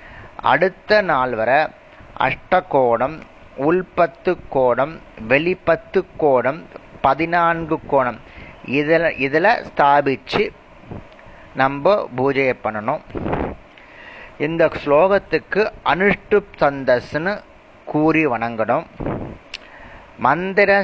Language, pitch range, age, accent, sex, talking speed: Tamil, 140-185 Hz, 30-49, native, male, 70 wpm